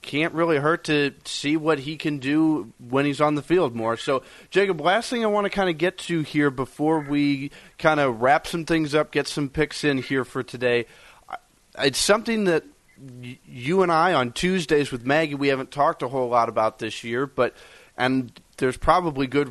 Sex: male